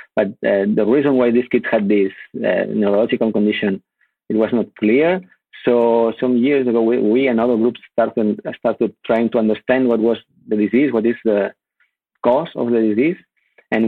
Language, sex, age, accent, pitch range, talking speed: English, male, 50-69, Spanish, 105-120 Hz, 185 wpm